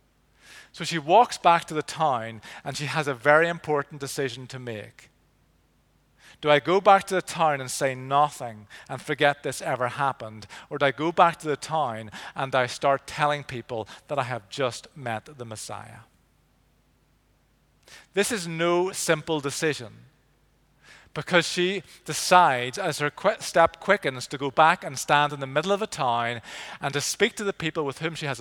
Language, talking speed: English, 175 wpm